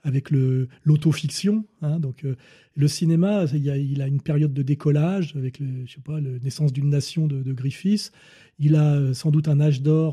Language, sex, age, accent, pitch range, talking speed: French, male, 40-59, French, 140-165 Hz, 190 wpm